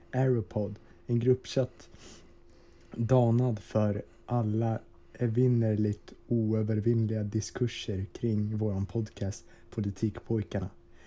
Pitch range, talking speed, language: 105-125 Hz, 70 wpm, Swedish